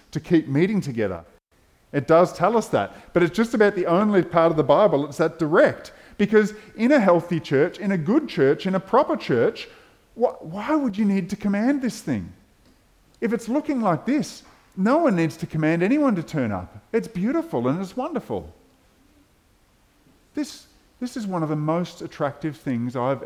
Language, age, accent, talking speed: English, 40-59, Australian, 190 wpm